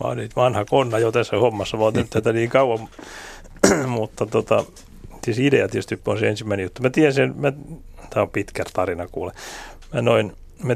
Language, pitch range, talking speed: Finnish, 110-145 Hz, 175 wpm